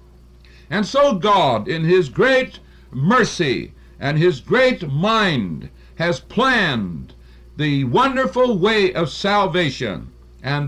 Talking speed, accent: 105 wpm, American